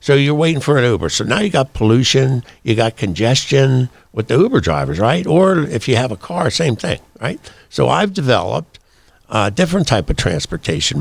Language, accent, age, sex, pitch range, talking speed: English, American, 60-79, male, 105-135 Hz, 195 wpm